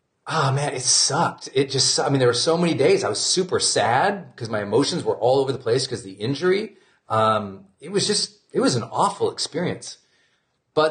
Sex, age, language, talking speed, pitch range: male, 40-59, English, 215 wpm, 125-160 Hz